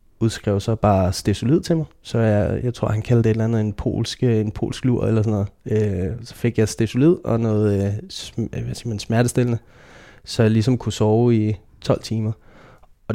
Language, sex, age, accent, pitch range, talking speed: Danish, male, 20-39, native, 105-115 Hz, 195 wpm